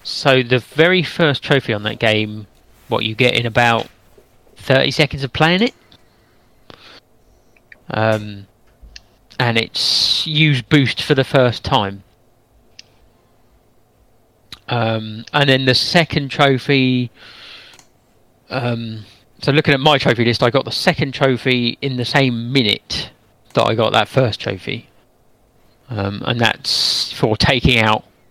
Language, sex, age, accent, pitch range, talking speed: English, male, 30-49, British, 110-135 Hz, 130 wpm